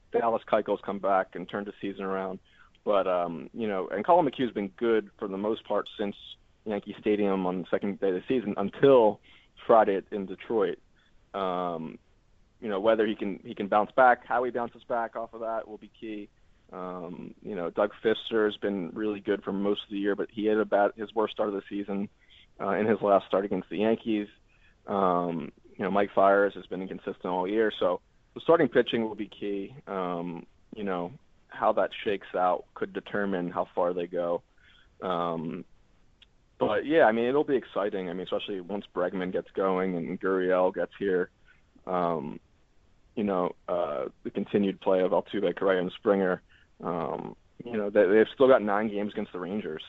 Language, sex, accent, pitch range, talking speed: English, male, American, 90-110 Hz, 195 wpm